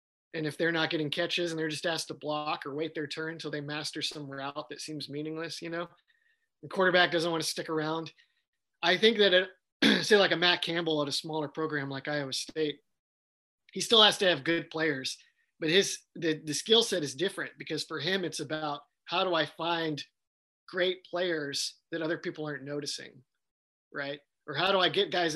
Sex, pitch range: male, 150-170 Hz